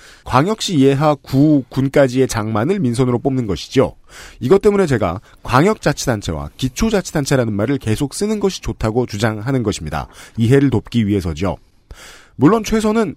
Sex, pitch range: male, 115-165 Hz